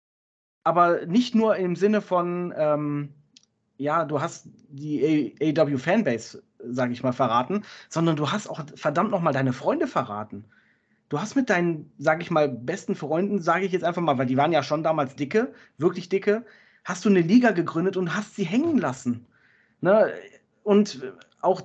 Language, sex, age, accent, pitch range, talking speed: German, male, 30-49, German, 160-215 Hz, 170 wpm